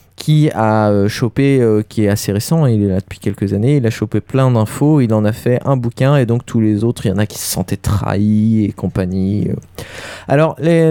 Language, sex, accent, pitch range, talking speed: French, male, French, 110-140 Hz, 240 wpm